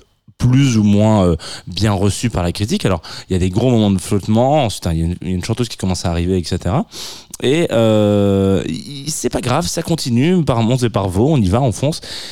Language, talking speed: French, 215 wpm